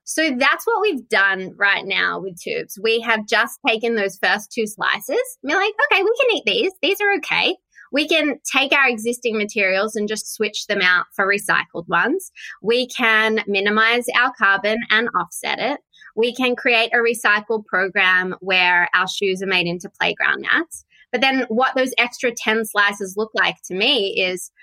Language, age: English, 20-39